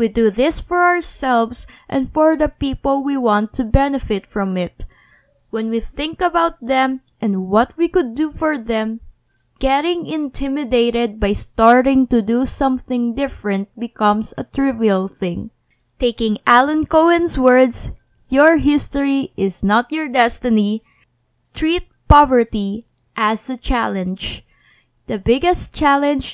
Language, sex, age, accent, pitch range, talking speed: English, female, 20-39, Filipino, 225-285 Hz, 130 wpm